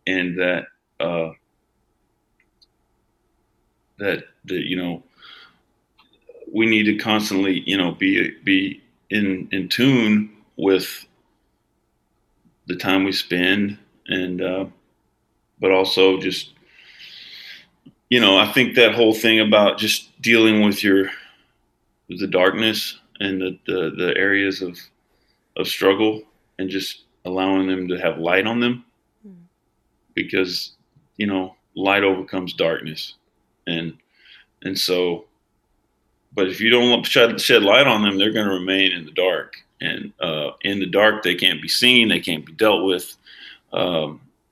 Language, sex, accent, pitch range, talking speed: English, male, American, 90-110 Hz, 135 wpm